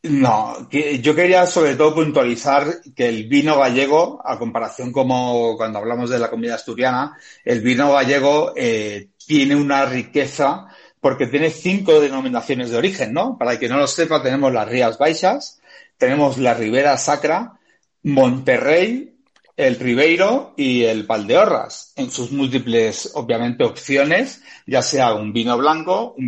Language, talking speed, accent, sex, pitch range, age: Spanish, 150 wpm, Spanish, male, 120-165 Hz, 40-59